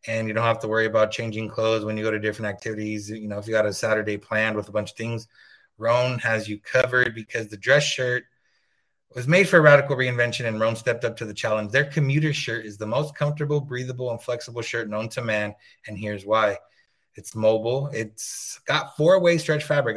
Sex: male